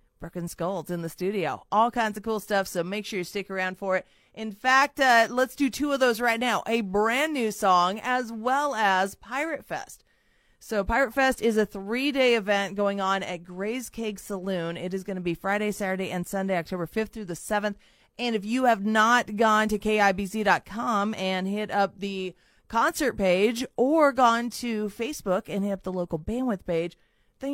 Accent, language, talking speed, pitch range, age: American, English, 195 wpm, 185-235 Hz, 30-49